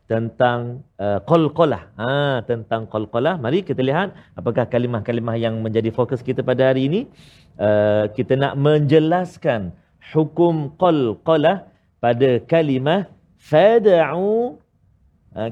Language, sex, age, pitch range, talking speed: Malayalam, male, 40-59, 125-175 Hz, 115 wpm